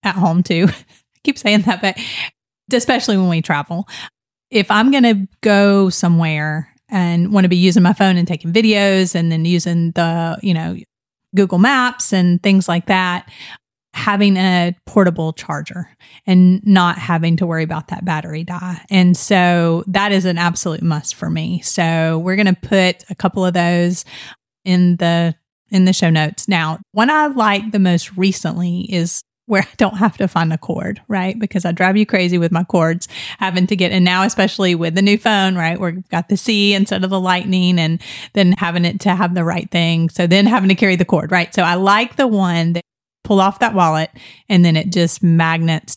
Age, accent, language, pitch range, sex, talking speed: 30-49, American, English, 170-195 Hz, female, 195 wpm